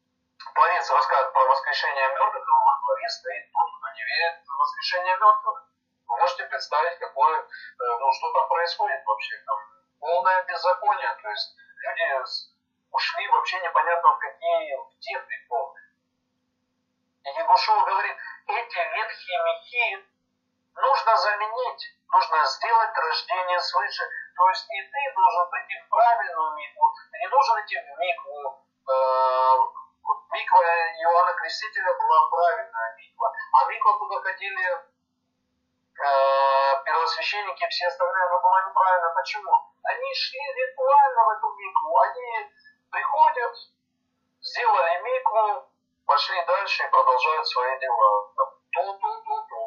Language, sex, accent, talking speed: Russian, male, native, 120 wpm